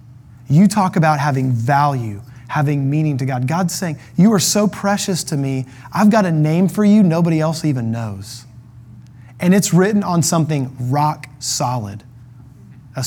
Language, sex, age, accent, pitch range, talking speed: English, male, 30-49, American, 125-190 Hz, 160 wpm